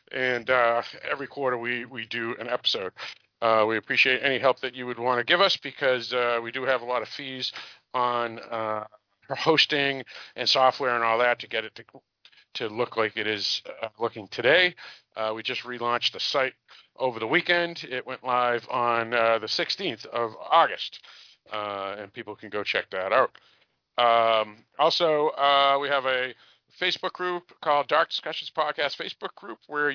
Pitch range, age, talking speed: 115-145 Hz, 50-69, 180 wpm